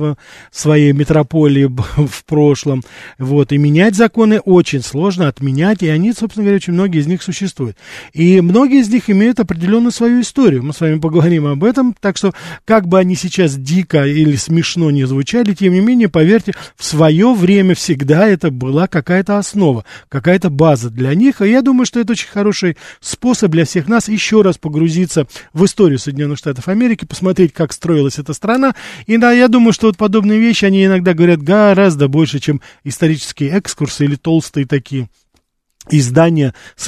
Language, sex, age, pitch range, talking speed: Russian, male, 40-59, 140-195 Hz, 170 wpm